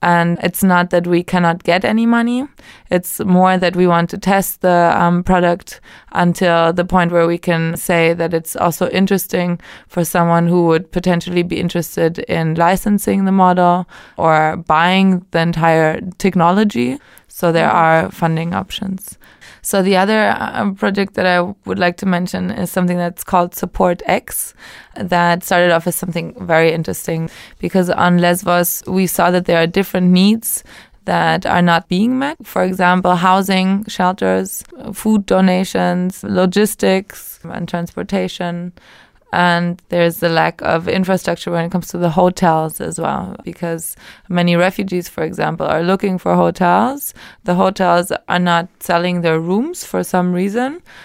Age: 20-39